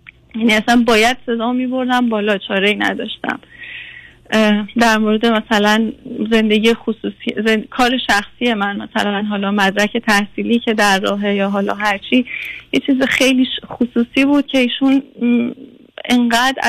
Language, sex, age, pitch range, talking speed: Persian, female, 30-49, 220-255 Hz, 135 wpm